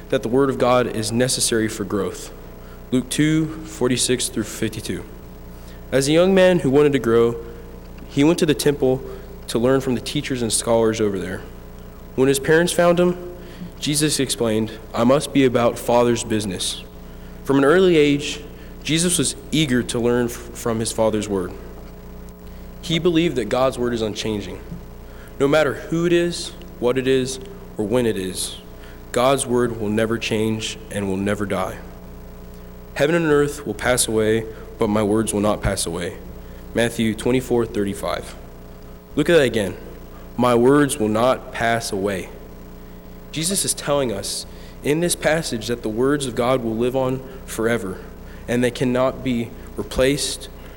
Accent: American